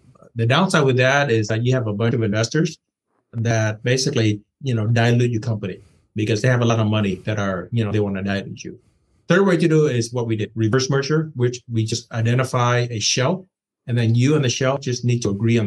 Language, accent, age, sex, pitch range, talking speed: English, American, 30-49, male, 110-130 Hz, 240 wpm